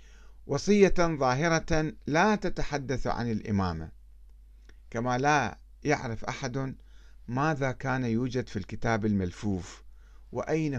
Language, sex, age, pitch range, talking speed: Arabic, male, 50-69, 100-150 Hz, 95 wpm